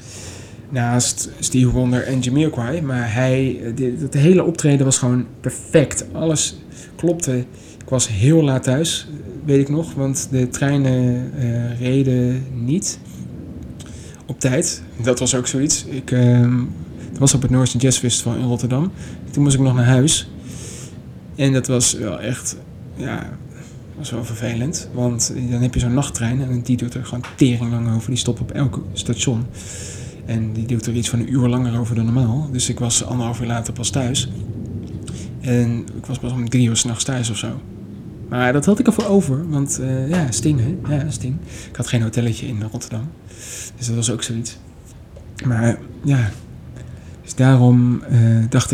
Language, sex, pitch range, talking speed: Dutch, male, 115-135 Hz, 175 wpm